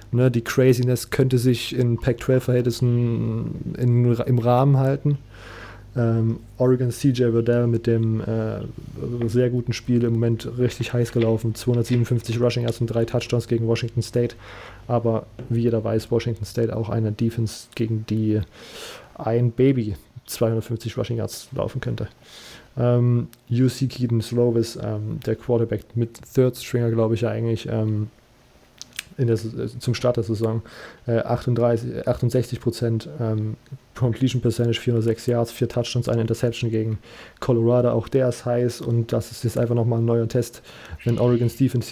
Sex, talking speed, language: male, 145 wpm, German